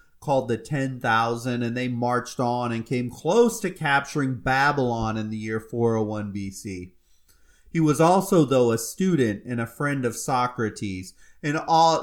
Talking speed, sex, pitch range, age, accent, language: 155 wpm, male, 115-140 Hz, 30-49, American, English